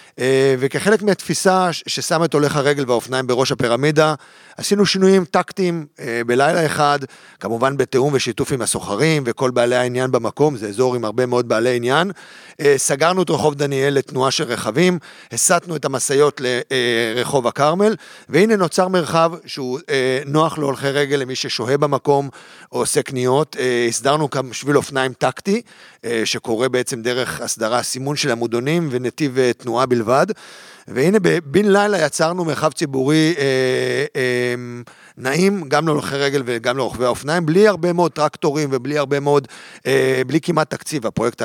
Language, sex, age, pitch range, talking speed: Hebrew, male, 40-59, 125-160 Hz, 140 wpm